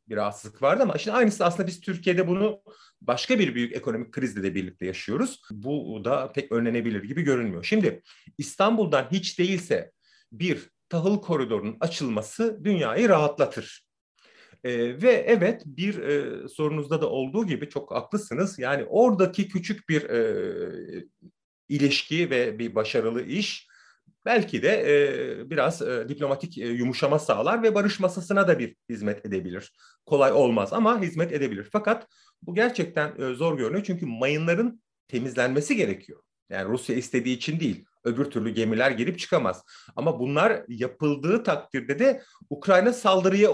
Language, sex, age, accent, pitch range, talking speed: Turkish, male, 40-59, native, 125-215 Hz, 135 wpm